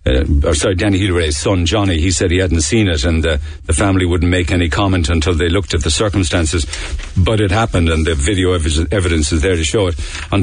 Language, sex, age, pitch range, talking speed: English, male, 50-69, 85-110 Hz, 240 wpm